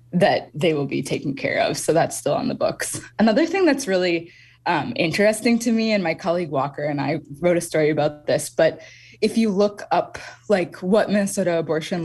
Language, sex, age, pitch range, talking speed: English, female, 20-39, 150-195 Hz, 205 wpm